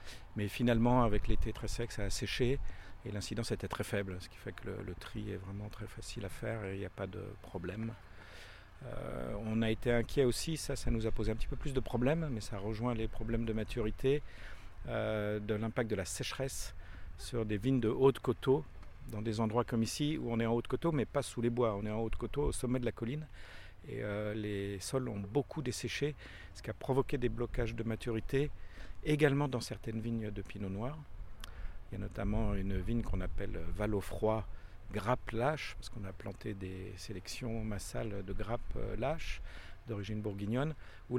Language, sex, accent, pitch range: French, male, French, 100-120 Hz